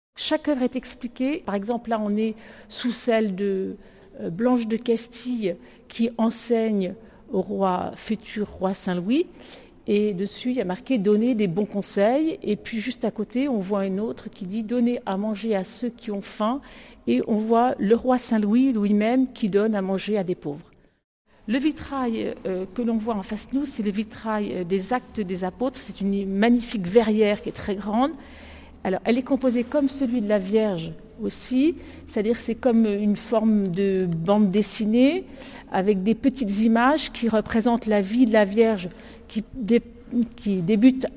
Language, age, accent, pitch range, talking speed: French, 50-69, French, 200-240 Hz, 180 wpm